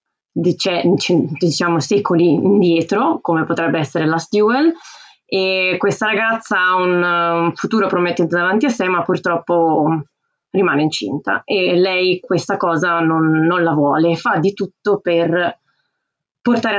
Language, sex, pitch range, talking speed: Italian, female, 165-205 Hz, 130 wpm